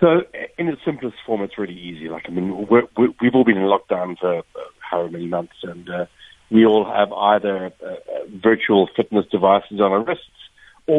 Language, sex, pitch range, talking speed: English, male, 95-110 Hz, 190 wpm